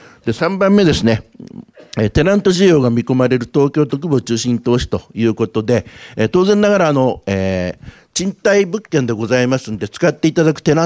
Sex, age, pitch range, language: male, 50-69, 110-160 Hz, Japanese